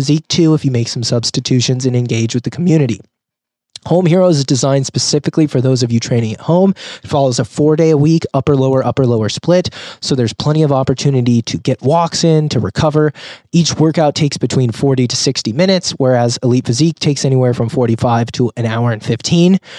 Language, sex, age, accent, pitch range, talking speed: English, male, 20-39, American, 130-160 Hz, 190 wpm